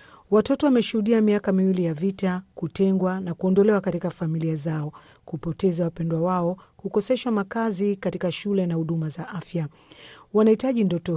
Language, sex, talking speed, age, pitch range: Swahili, female, 135 wpm, 40-59, 160-200 Hz